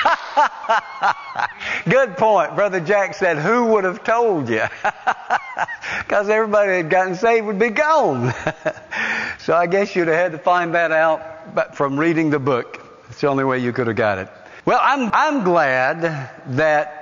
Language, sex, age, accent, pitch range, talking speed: English, male, 60-79, American, 135-180 Hz, 160 wpm